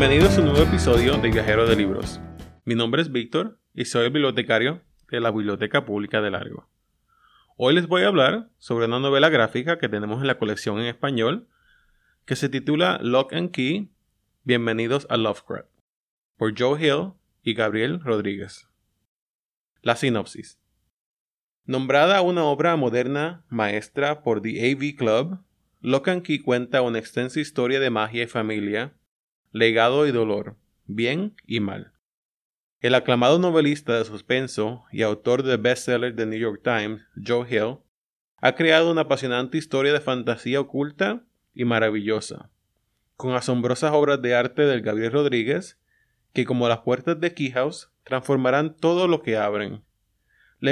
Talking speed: 150 wpm